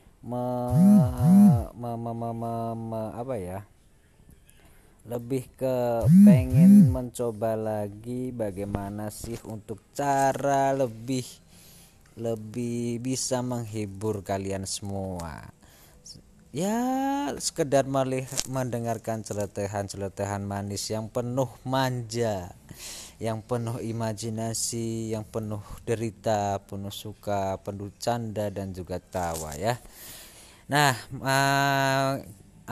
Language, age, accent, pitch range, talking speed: Indonesian, 20-39, native, 100-125 Hz, 90 wpm